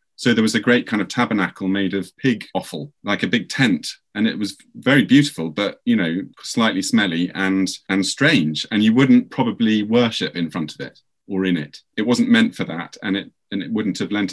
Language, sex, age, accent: English, male, 30-49, British